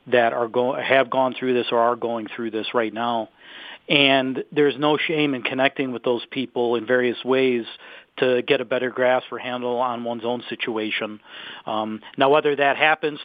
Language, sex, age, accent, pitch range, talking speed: English, male, 40-59, American, 120-145 Hz, 190 wpm